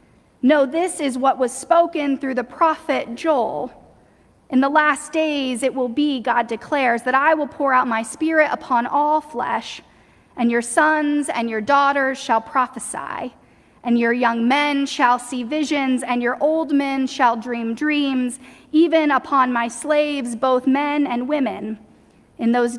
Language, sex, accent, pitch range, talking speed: English, female, American, 245-290 Hz, 160 wpm